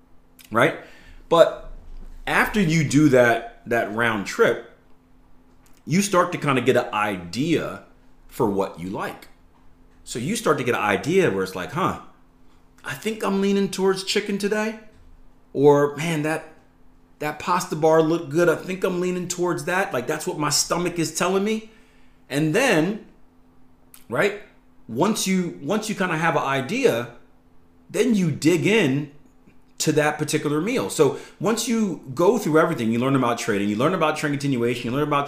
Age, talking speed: 30-49, 170 wpm